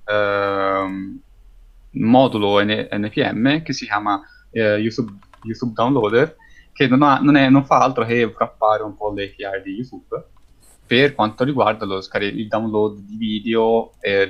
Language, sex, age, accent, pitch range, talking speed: Italian, male, 20-39, native, 100-120 Hz, 120 wpm